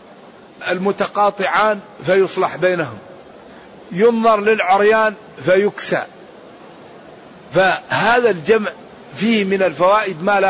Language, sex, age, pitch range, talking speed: Arabic, male, 50-69, 180-215 Hz, 75 wpm